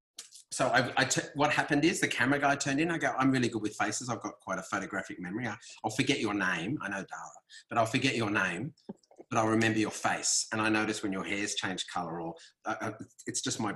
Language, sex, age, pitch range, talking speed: English, male, 30-49, 100-125 Hz, 245 wpm